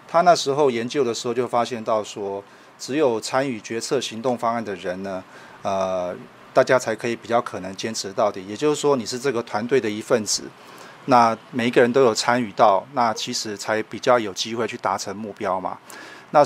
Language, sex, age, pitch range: Chinese, male, 30-49, 105-125 Hz